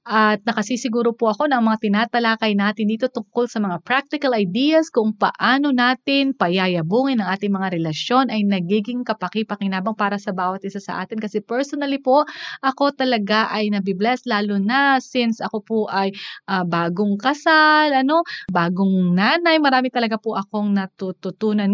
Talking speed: 150 wpm